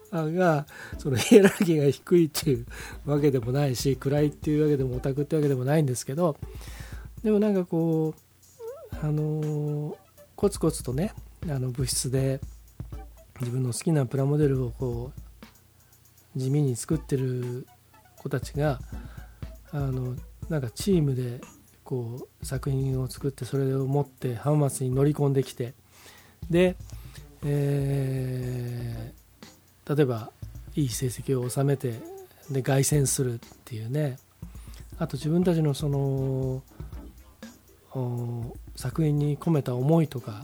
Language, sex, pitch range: Japanese, male, 120-150 Hz